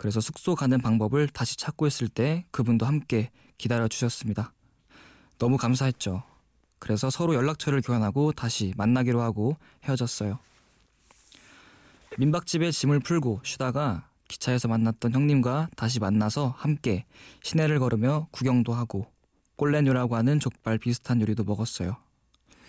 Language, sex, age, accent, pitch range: Korean, male, 20-39, native, 115-145 Hz